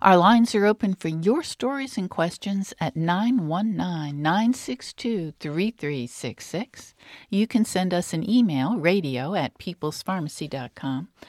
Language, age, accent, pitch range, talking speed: English, 60-79, American, 155-225 Hz, 105 wpm